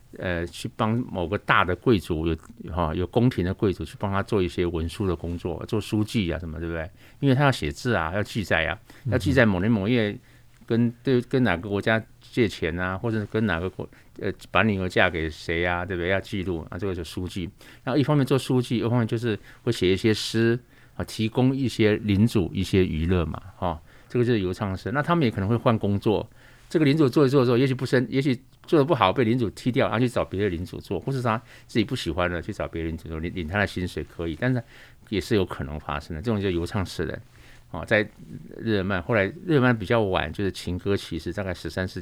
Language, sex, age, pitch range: Chinese, male, 50-69, 90-125 Hz